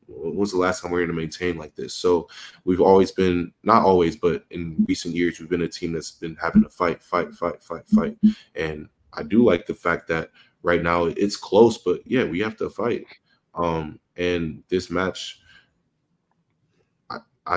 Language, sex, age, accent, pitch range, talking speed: English, male, 20-39, American, 85-95 Hz, 185 wpm